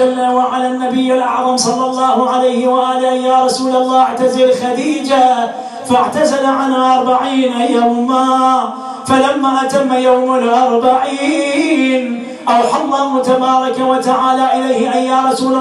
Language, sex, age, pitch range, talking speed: English, male, 30-49, 255-270 Hz, 110 wpm